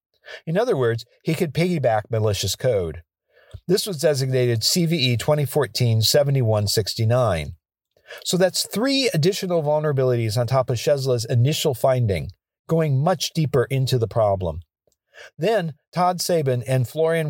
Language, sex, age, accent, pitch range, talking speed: English, male, 50-69, American, 110-160 Hz, 120 wpm